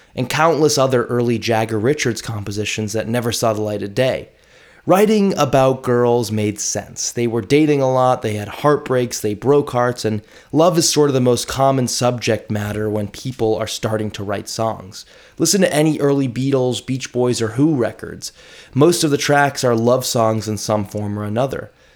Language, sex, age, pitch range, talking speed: English, male, 20-39, 110-135 Hz, 190 wpm